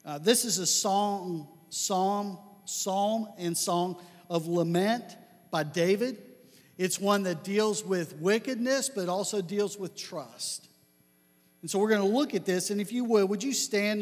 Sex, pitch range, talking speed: male, 165-210 Hz, 175 wpm